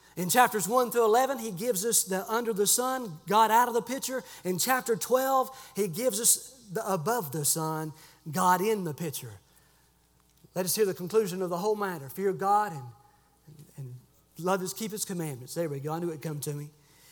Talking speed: 205 wpm